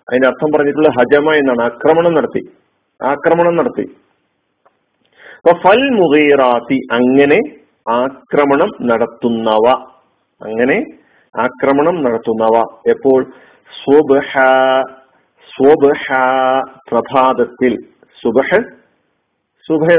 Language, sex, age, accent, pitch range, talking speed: Malayalam, male, 50-69, native, 130-170 Hz, 30 wpm